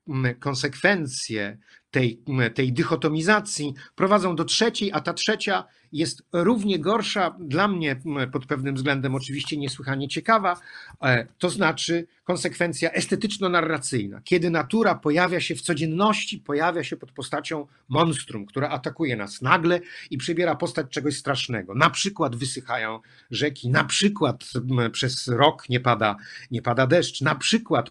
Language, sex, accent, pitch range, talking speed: Polish, male, native, 130-180 Hz, 125 wpm